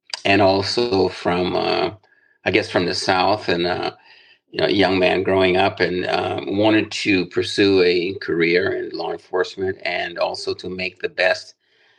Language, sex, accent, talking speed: English, male, American, 155 wpm